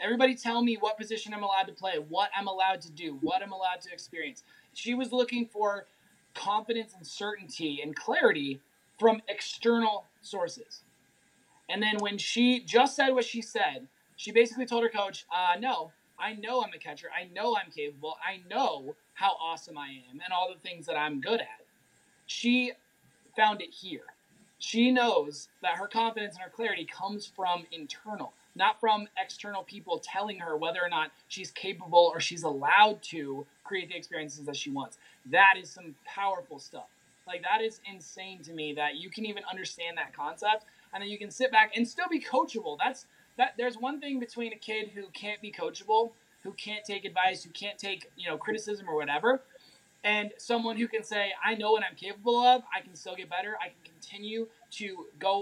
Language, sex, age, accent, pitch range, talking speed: English, male, 20-39, American, 180-230 Hz, 195 wpm